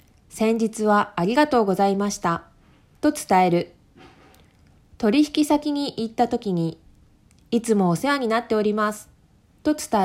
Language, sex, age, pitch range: Japanese, female, 20-39, 170-260 Hz